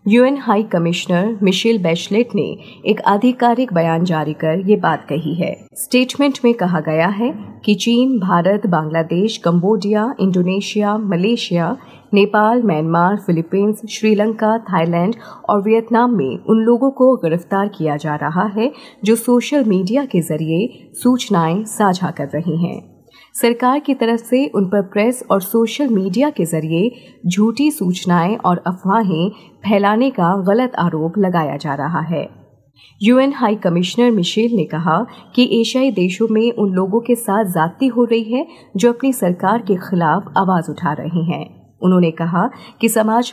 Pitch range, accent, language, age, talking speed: 175-235 Hz, native, Hindi, 30-49, 150 wpm